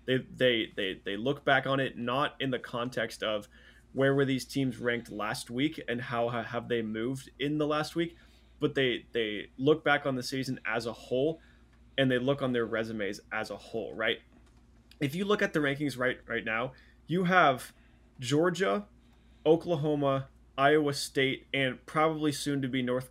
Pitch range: 115-135 Hz